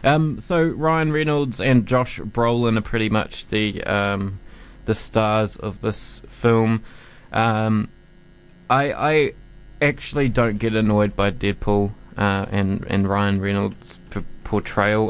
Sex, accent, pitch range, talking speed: male, Australian, 105-125 Hz, 130 wpm